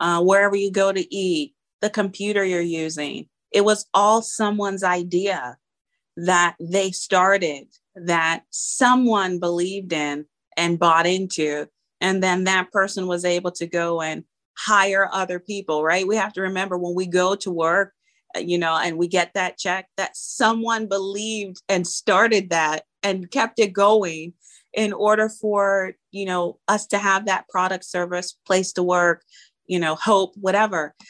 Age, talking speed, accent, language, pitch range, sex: 30-49, 160 wpm, American, English, 170-200 Hz, female